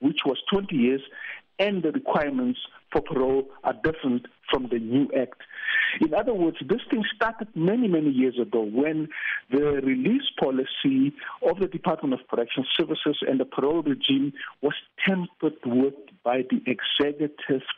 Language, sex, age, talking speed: English, male, 50-69, 150 wpm